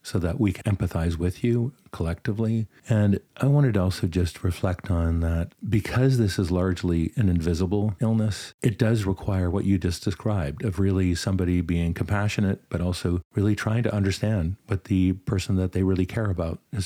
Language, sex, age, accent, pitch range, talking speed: English, male, 50-69, American, 90-110 Hz, 180 wpm